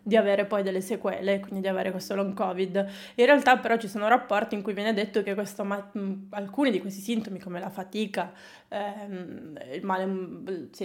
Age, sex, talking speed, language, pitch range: 20-39, female, 190 wpm, Italian, 195-230 Hz